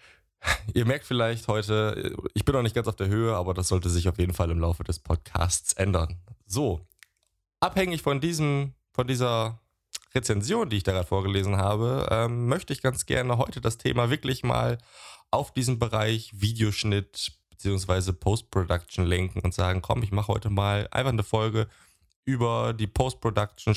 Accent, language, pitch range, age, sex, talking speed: German, German, 95-115 Hz, 20-39, male, 170 wpm